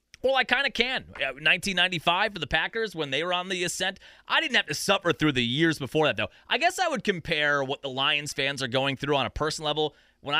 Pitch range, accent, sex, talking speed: 125-165 Hz, American, male, 250 wpm